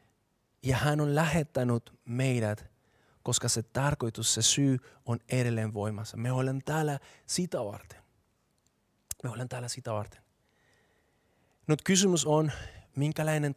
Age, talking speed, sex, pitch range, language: 30-49, 120 wpm, male, 115-140 Hz, Finnish